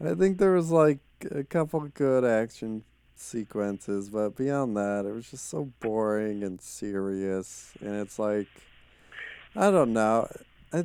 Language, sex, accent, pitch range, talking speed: English, male, American, 100-155 Hz, 150 wpm